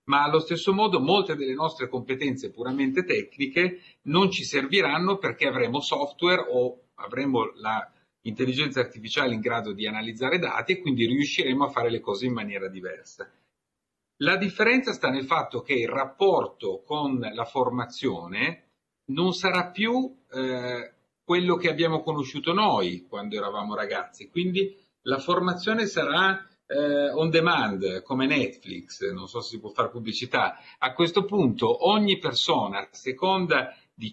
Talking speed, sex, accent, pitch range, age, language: 140 wpm, male, native, 125-180 Hz, 50-69, Italian